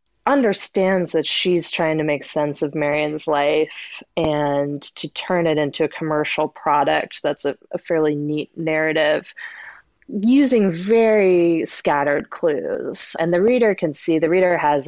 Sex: female